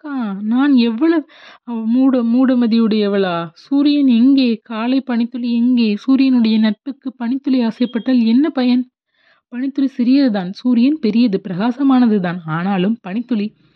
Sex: female